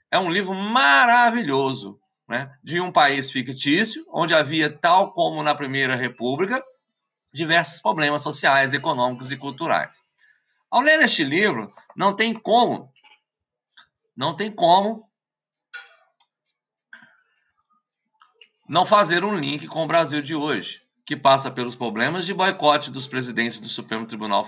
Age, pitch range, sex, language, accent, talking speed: 50-69, 145-230 Hz, male, Portuguese, Brazilian, 125 wpm